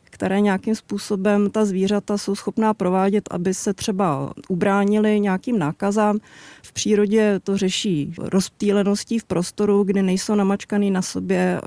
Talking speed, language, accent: 135 wpm, Czech, native